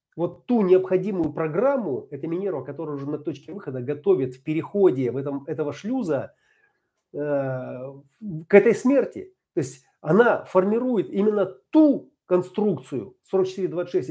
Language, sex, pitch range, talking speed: Russian, male, 145-190 Hz, 130 wpm